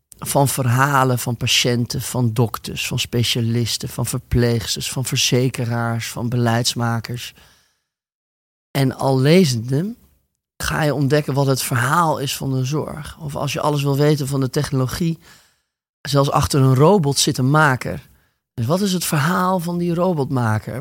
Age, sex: 30-49, male